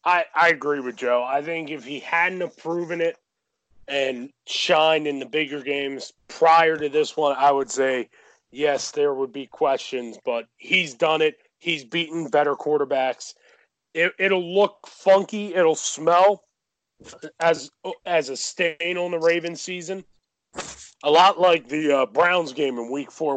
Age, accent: 30-49, American